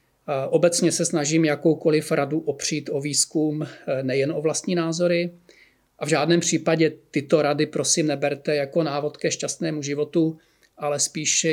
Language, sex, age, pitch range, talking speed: Czech, male, 40-59, 145-165 Hz, 140 wpm